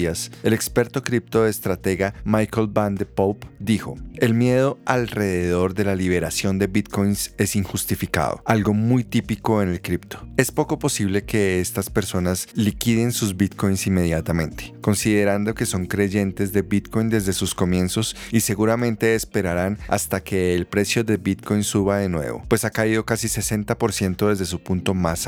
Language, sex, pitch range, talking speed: Spanish, male, 95-115 Hz, 150 wpm